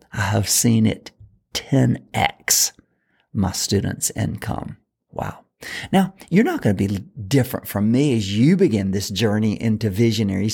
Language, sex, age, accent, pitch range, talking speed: English, male, 50-69, American, 115-190 Hz, 140 wpm